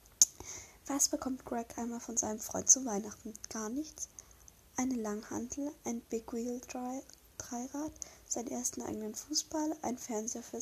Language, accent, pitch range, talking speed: German, German, 220-270 Hz, 135 wpm